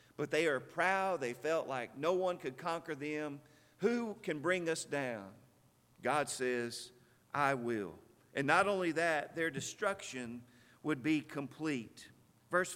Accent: American